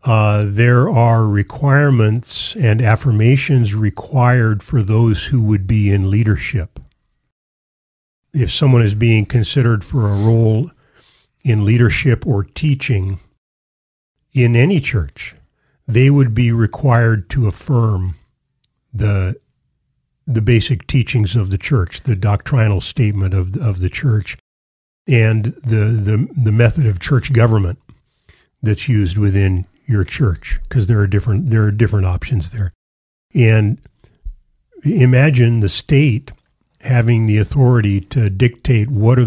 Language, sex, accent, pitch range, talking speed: English, male, American, 105-125 Hz, 125 wpm